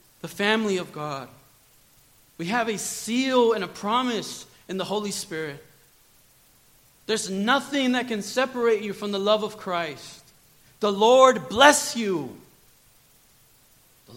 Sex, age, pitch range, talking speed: male, 40-59, 135-185 Hz, 130 wpm